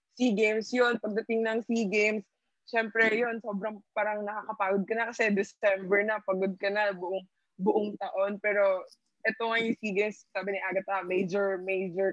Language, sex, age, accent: English, female, 20-39, Filipino